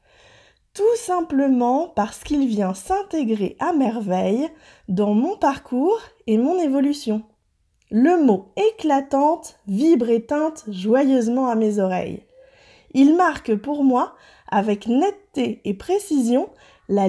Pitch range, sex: 220-310 Hz, female